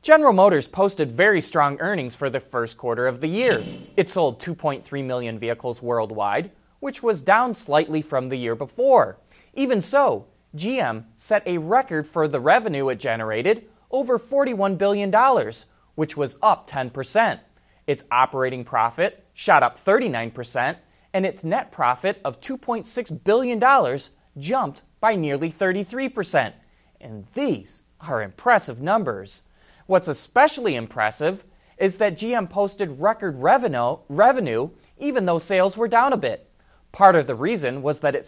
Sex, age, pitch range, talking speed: male, 30-49, 140-220 Hz, 145 wpm